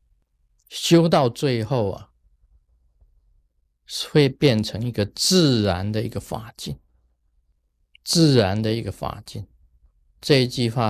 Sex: male